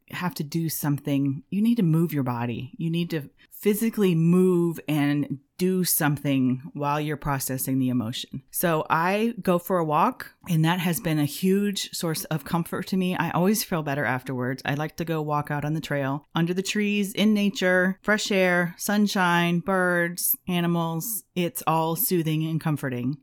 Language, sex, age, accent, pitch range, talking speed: English, female, 30-49, American, 145-185 Hz, 180 wpm